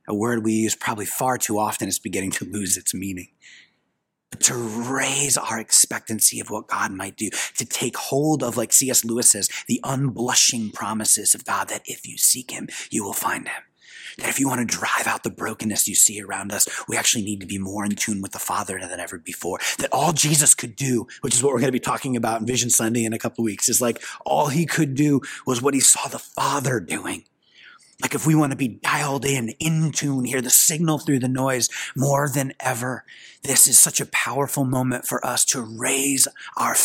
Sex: male